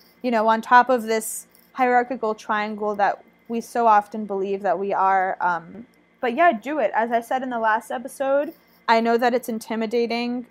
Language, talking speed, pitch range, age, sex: English, 190 wpm, 205-235 Hz, 20-39, female